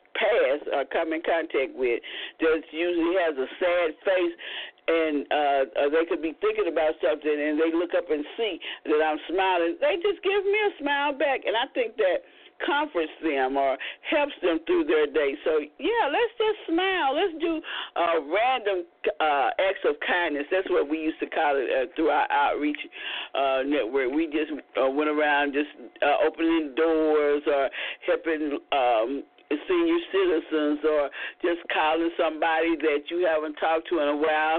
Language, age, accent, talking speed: English, 50-69, American, 175 wpm